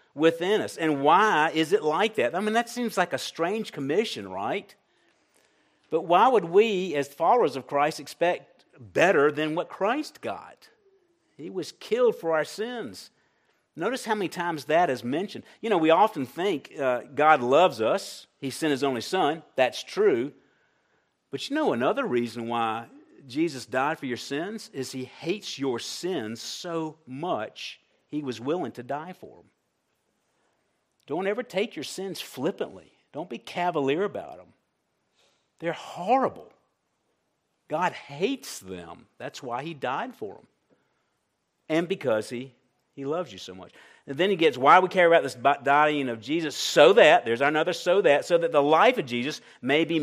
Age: 50-69